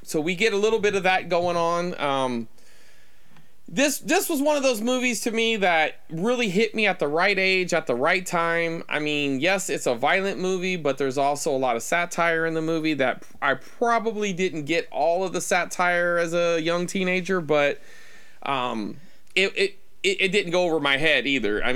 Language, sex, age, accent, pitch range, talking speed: English, male, 20-39, American, 140-190 Hz, 205 wpm